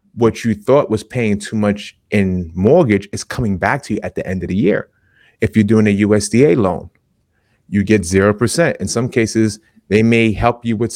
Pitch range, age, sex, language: 105-125 Hz, 30-49, male, English